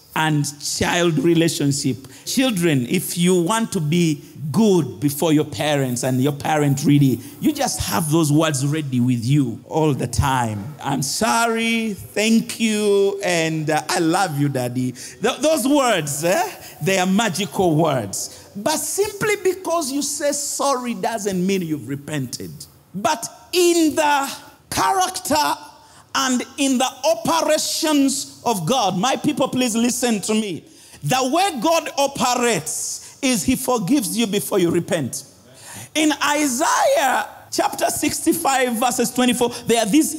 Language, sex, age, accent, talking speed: English, male, 50-69, Nigerian, 135 wpm